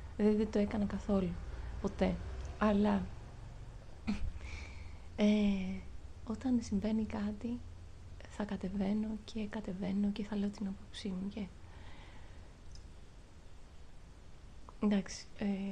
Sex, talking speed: female, 80 wpm